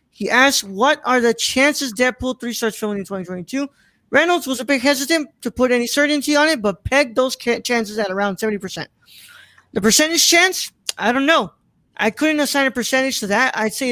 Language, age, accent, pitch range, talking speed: English, 20-39, American, 205-255 Hz, 195 wpm